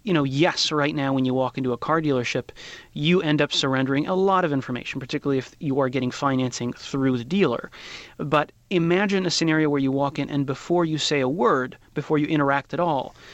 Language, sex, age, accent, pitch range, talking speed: English, male, 30-49, American, 130-150 Hz, 215 wpm